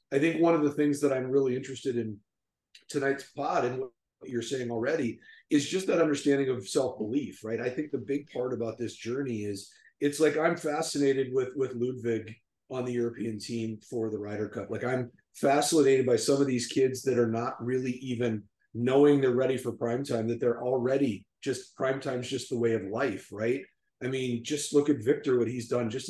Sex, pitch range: male, 115-135 Hz